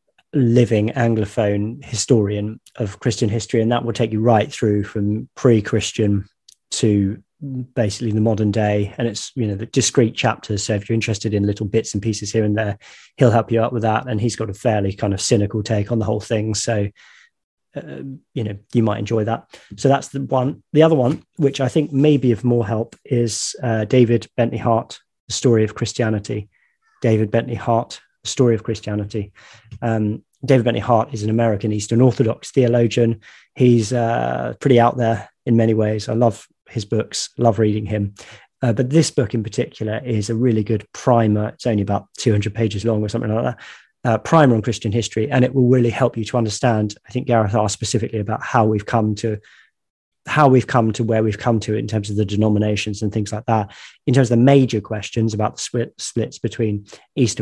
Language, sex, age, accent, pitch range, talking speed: English, male, 20-39, British, 105-120 Hz, 205 wpm